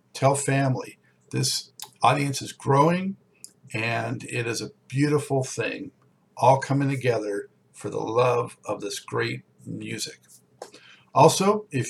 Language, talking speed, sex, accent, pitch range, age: English, 120 wpm, male, American, 120-145 Hz, 50-69